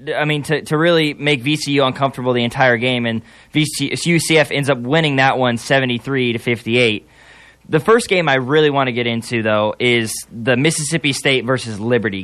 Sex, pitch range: male, 125-150 Hz